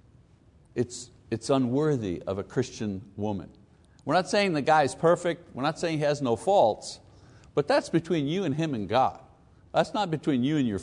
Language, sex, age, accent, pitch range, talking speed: English, male, 60-79, American, 120-180 Hz, 195 wpm